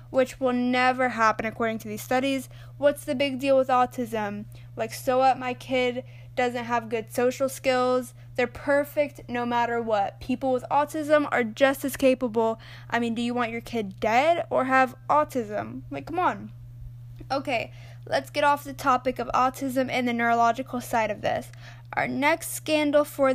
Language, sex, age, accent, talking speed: English, female, 10-29, American, 175 wpm